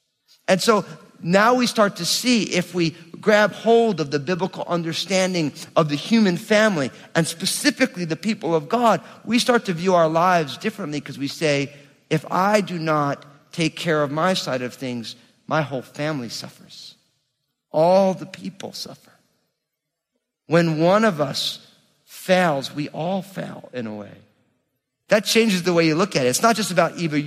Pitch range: 145-190 Hz